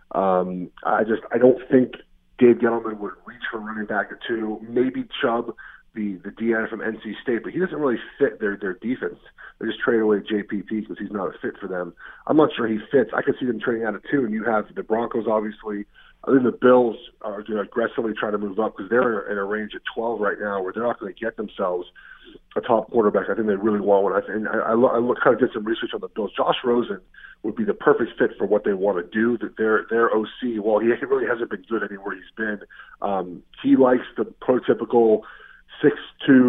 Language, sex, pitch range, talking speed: English, male, 105-120 Hz, 240 wpm